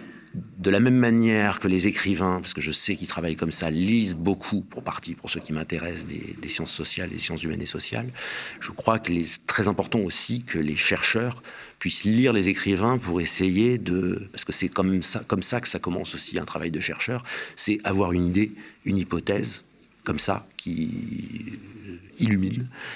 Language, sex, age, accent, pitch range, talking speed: French, male, 50-69, French, 90-110 Hz, 195 wpm